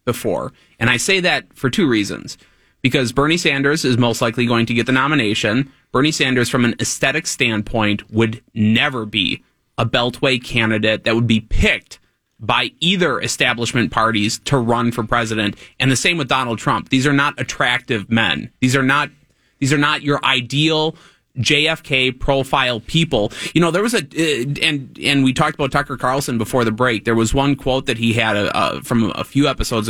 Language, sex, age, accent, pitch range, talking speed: English, male, 30-49, American, 115-150 Hz, 185 wpm